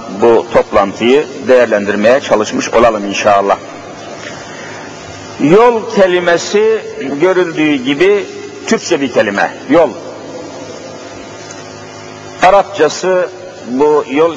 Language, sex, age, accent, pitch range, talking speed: Turkish, male, 60-79, native, 140-190 Hz, 70 wpm